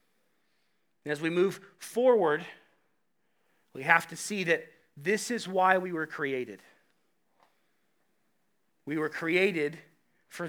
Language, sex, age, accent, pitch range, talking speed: English, male, 40-59, American, 155-195 Hz, 115 wpm